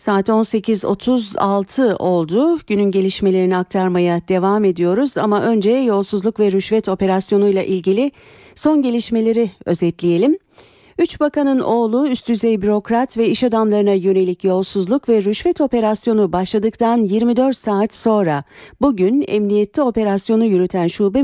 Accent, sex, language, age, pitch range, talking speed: native, female, Turkish, 40-59, 185-240 Hz, 115 wpm